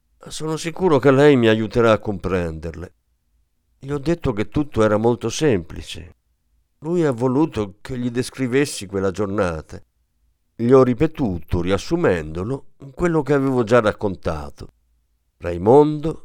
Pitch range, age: 85-135 Hz, 50-69